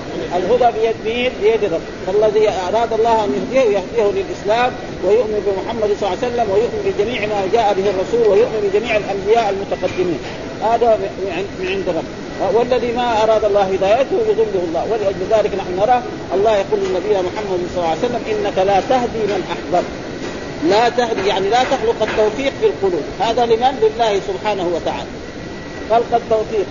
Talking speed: 155 wpm